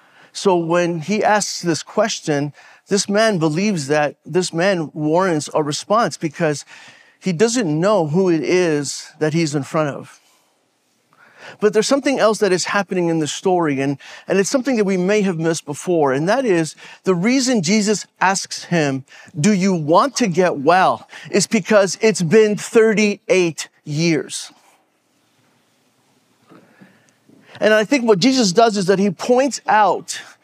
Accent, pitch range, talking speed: American, 165-220 Hz, 155 wpm